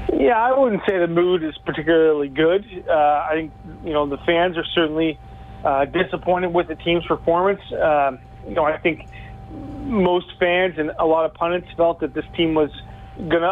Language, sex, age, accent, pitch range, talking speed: English, male, 30-49, American, 150-170 Hz, 185 wpm